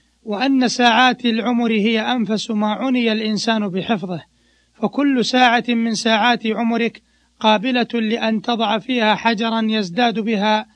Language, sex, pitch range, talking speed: Arabic, male, 215-245 Hz, 115 wpm